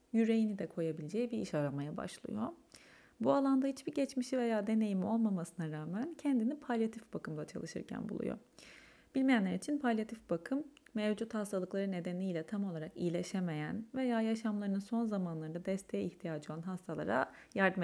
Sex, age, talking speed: female, 30-49, 130 wpm